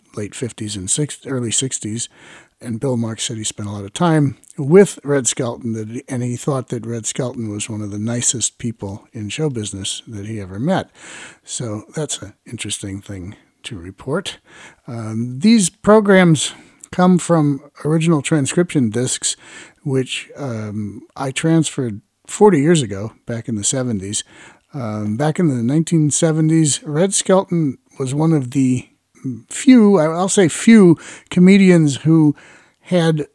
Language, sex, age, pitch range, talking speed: English, male, 50-69, 110-160 Hz, 145 wpm